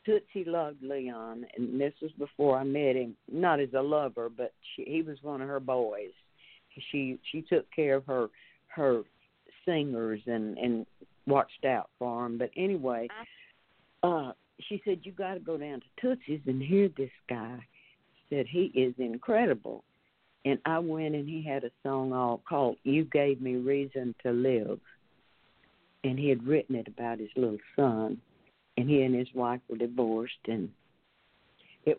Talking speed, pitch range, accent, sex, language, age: 170 wpm, 125-150 Hz, American, female, English, 60-79